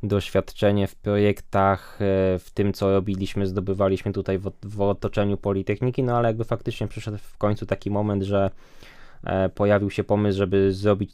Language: Polish